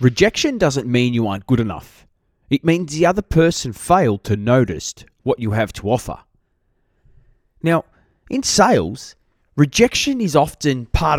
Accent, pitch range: Australian, 115-185 Hz